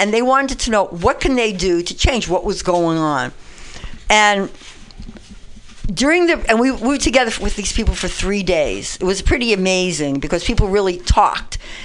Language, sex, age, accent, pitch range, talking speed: English, female, 60-79, American, 195-260 Hz, 185 wpm